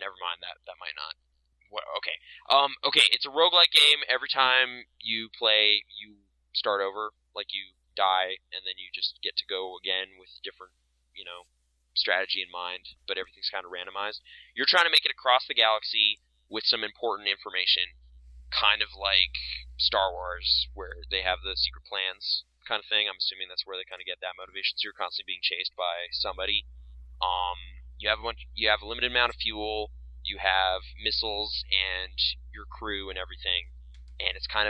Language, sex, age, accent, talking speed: English, male, 20-39, American, 185 wpm